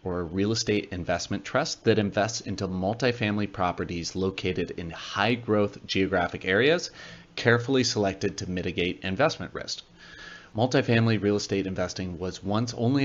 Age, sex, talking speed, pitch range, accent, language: 30-49, male, 140 wpm, 95-115 Hz, American, English